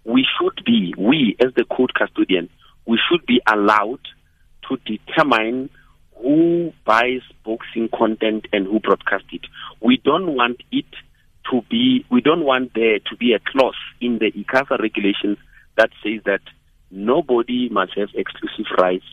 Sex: male